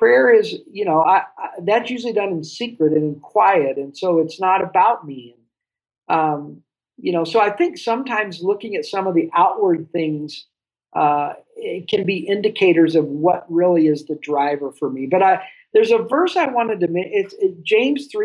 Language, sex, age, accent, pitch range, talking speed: English, male, 50-69, American, 160-225 Hz, 190 wpm